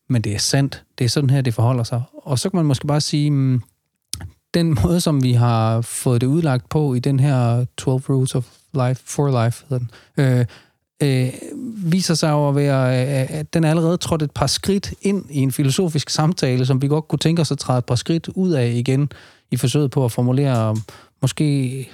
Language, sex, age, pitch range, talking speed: Danish, male, 30-49, 125-155 Hz, 210 wpm